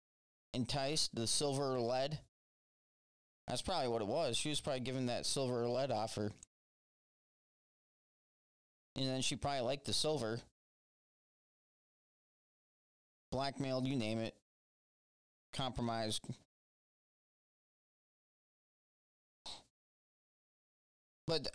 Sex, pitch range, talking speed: male, 115-145 Hz, 90 wpm